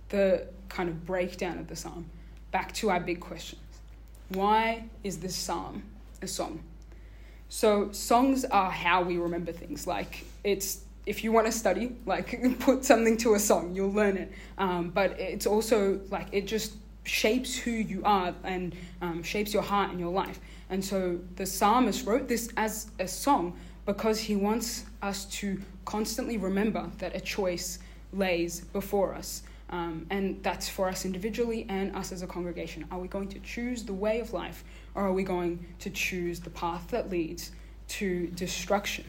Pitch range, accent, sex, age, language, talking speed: 180-215 Hz, Australian, female, 20-39, English, 175 wpm